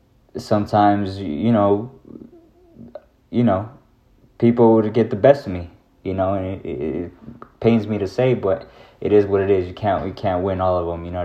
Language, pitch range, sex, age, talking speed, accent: English, 95-110 Hz, male, 20-39, 205 wpm, American